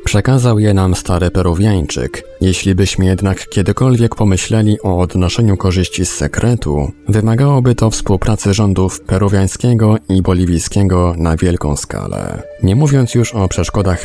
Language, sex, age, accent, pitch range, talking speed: Polish, male, 20-39, native, 90-110 Hz, 130 wpm